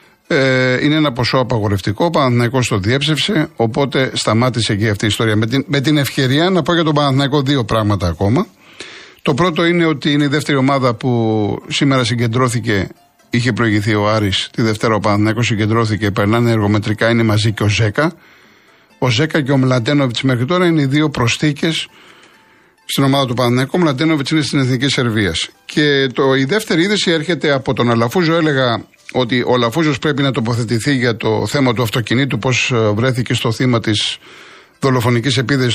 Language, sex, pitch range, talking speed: Greek, male, 115-155 Hz, 170 wpm